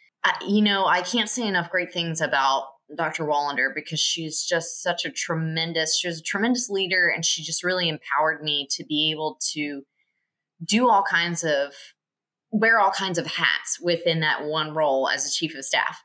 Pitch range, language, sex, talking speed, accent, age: 155-190 Hz, English, female, 185 wpm, American, 20-39